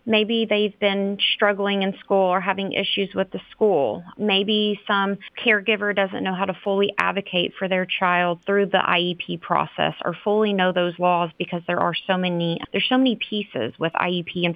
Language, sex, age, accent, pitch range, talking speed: English, female, 30-49, American, 175-205 Hz, 185 wpm